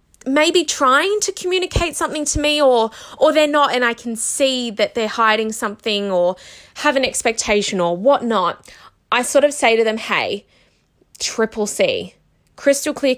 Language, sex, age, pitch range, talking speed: English, female, 20-39, 210-270 Hz, 165 wpm